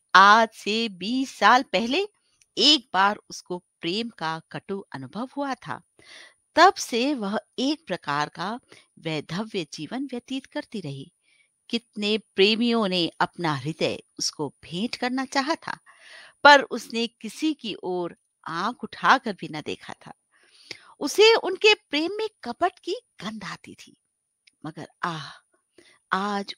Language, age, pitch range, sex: Hindi, 60-79, 190-285 Hz, female